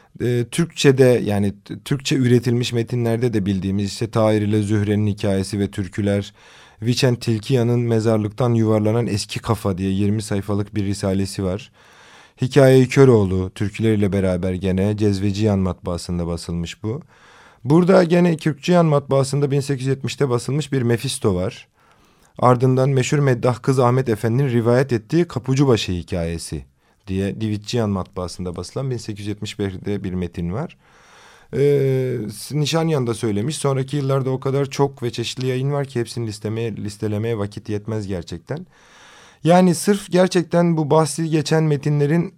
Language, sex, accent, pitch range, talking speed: Turkish, male, native, 105-135 Hz, 125 wpm